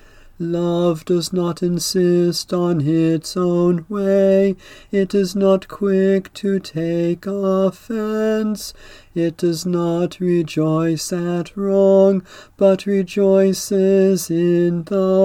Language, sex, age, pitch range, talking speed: English, male, 40-59, 170-195 Hz, 100 wpm